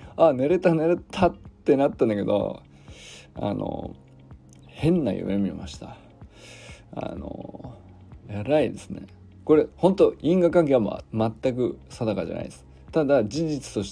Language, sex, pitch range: Japanese, male, 95-155 Hz